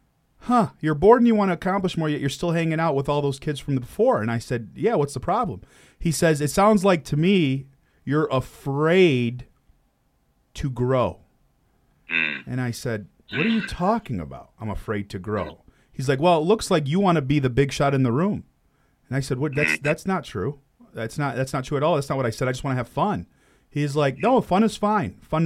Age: 40-59